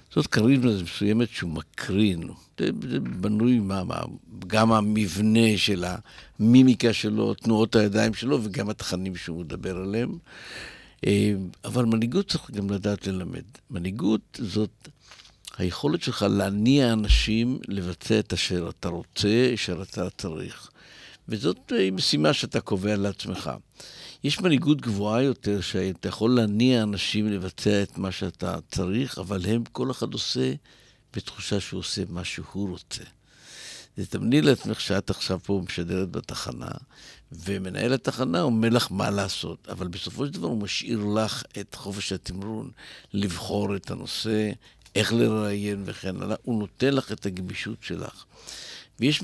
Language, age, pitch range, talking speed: Hebrew, 60-79, 95-115 Hz, 135 wpm